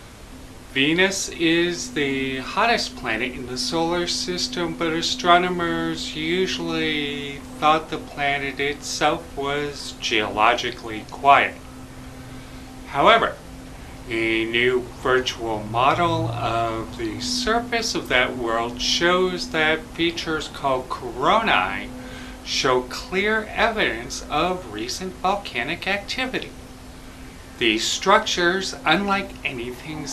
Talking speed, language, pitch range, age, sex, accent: 90 wpm, English, 120-165 Hz, 40-59, male, American